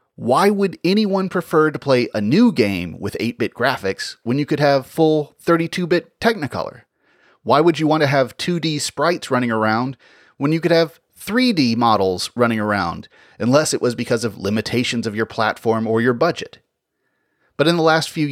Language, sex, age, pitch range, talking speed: English, male, 30-49, 105-150 Hz, 175 wpm